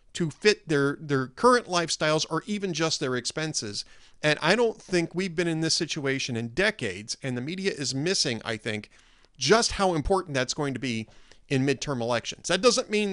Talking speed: 190 wpm